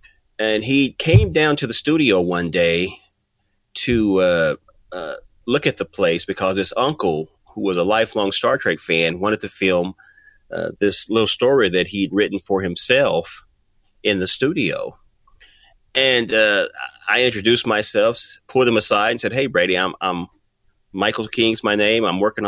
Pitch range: 95-120 Hz